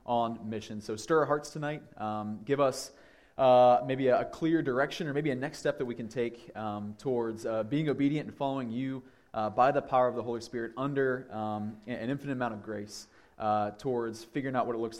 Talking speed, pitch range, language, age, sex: 220 wpm, 115-140 Hz, English, 20-39, male